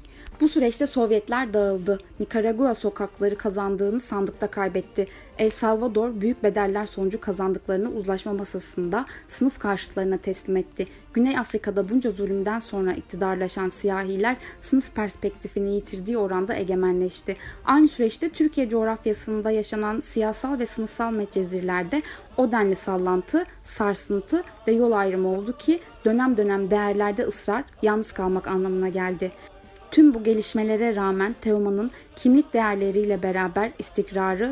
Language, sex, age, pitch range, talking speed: Turkish, female, 10-29, 195-235 Hz, 120 wpm